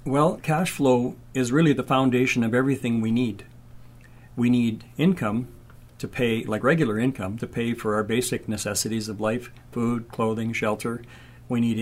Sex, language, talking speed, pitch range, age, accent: male, English, 160 wpm, 115-135 Hz, 60-79, American